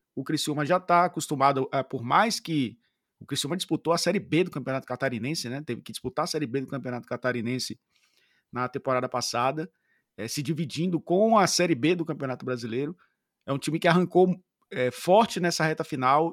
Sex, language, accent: male, Portuguese, Brazilian